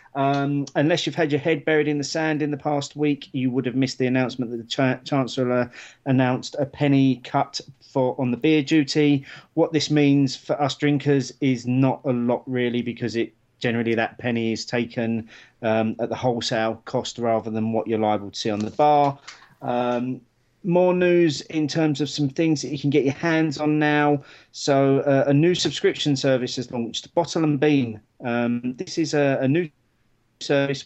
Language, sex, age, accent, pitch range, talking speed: English, male, 40-59, British, 120-145 Hz, 195 wpm